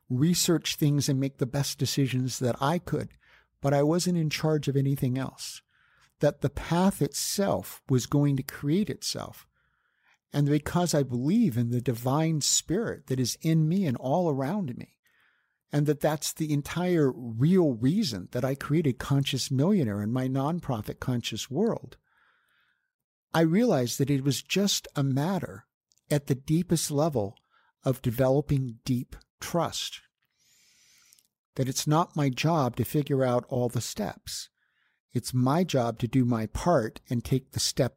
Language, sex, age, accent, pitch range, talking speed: English, male, 60-79, American, 125-165 Hz, 155 wpm